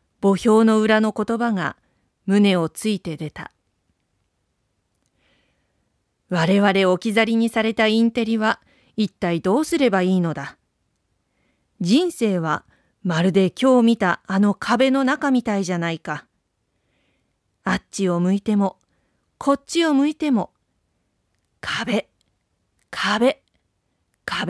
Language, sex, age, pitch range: Japanese, female, 40-59, 155-235 Hz